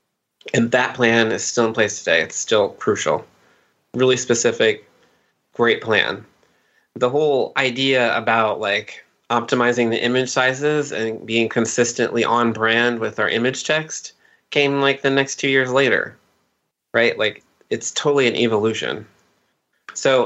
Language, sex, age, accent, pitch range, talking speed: English, male, 20-39, American, 115-135 Hz, 140 wpm